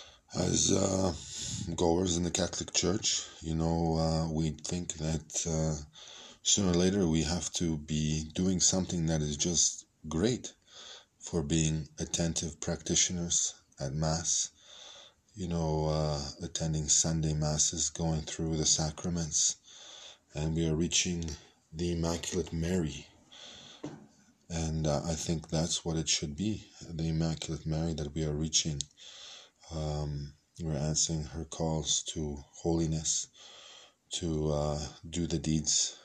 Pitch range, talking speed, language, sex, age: 75-85 Hz, 130 wpm, Hebrew, male, 20-39